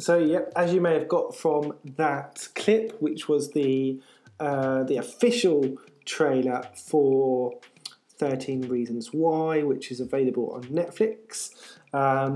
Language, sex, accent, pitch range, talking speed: English, male, British, 130-155 Hz, 130 wpm